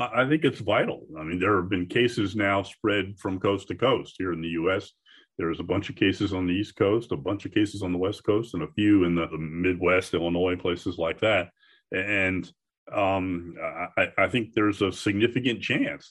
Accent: American